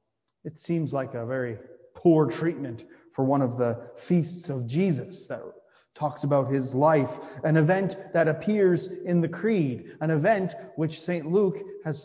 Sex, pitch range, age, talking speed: male, 135-175 Hz, 30-49, 160 wpm